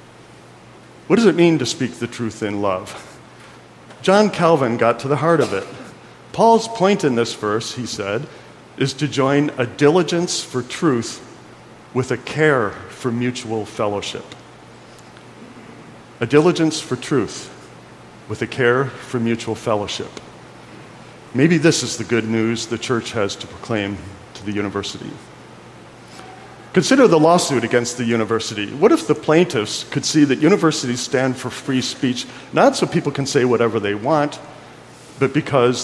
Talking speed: 150 wpm